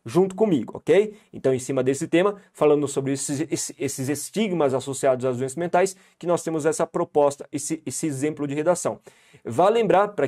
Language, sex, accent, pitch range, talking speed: Portuguese, male, Brazilian, 145-170 Hz, 175 wpm